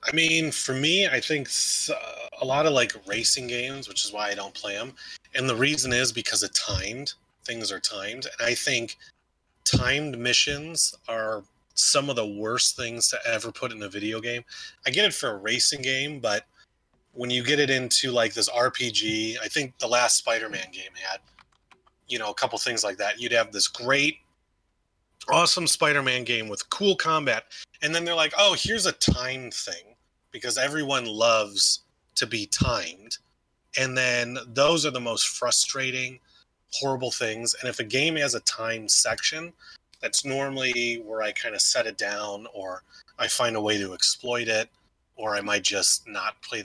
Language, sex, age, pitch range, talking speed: English, male, 30-49, 110-140 Hz, 185 wpm